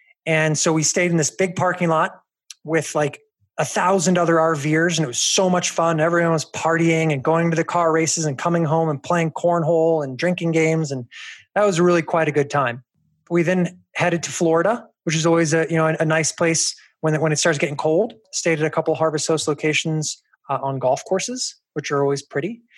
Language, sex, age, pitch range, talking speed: English, male, 20-39, 145-170 Hz, 220 wpm